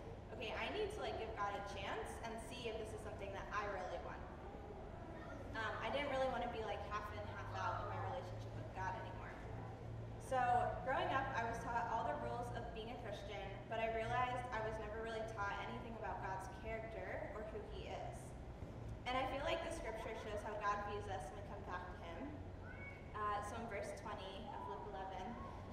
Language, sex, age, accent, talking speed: English, female, 10-29, American, 210 wpm